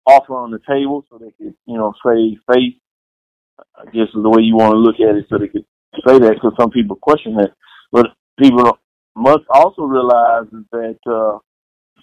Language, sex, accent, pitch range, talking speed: English, male, American, 110-135 Hz, 195 wpm